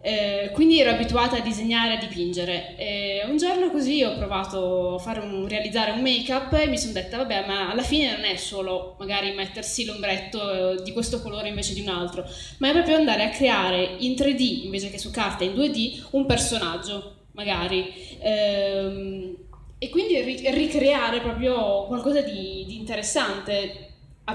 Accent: native